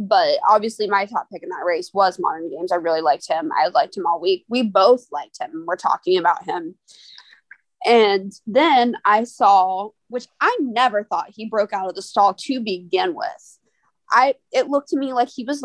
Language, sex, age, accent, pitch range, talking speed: English, female, 20-39, American, 205-295 Hz, 205 wpm